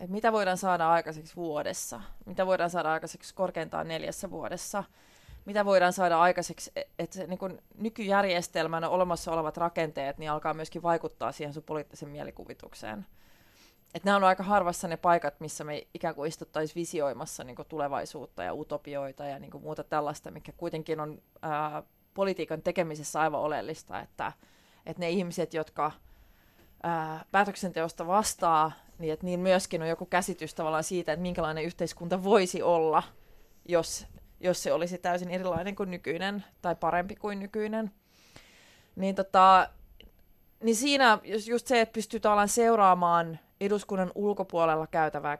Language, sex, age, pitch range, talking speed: Finnish, female, 20-39, 155-185 Hz, 140 wpm